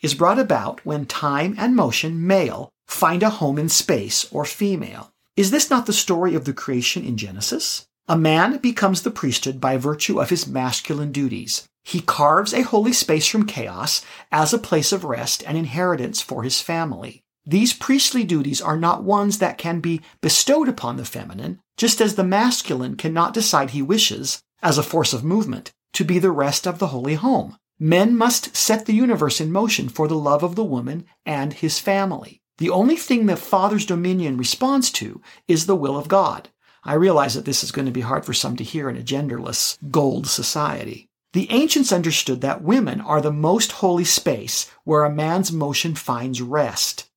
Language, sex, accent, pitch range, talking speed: English, male, American, 150-210 Hz, 190 wpm